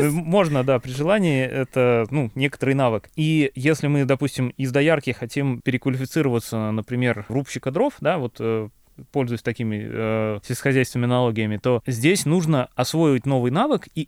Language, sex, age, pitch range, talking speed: Russian, male, 20-39, 120-160 Hz, 140 wpm